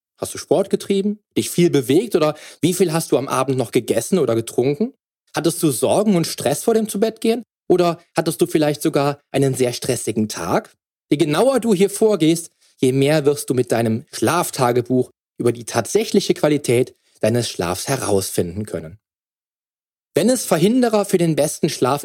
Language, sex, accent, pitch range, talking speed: German, male, German, 120-180 Hz, 170 wpm